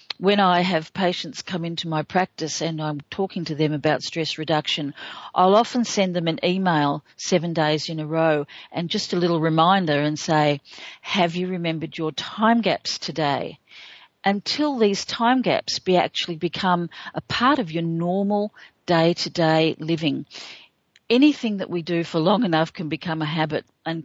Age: 50-69